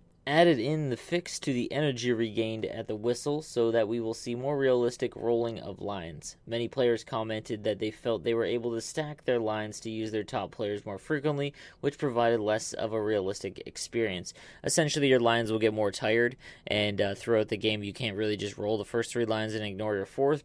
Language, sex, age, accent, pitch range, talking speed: English, male, 20-39, American, 110-130 Hz, 215 wpm